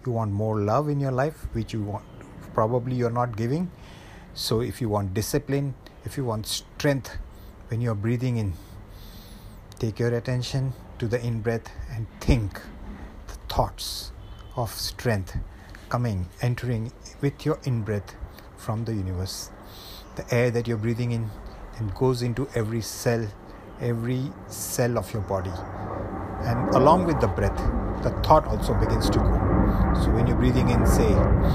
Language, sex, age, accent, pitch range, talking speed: English, male, 50-69, Indian, 100-120 Hz, 150 wpm